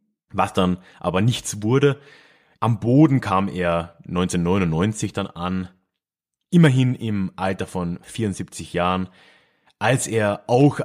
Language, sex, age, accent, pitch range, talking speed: German, male, 30-49, German, 95-150 Hz, 115 wpm